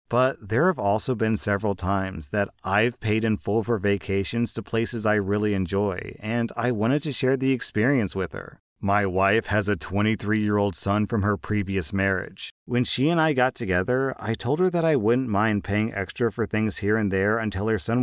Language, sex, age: English, male, 30-49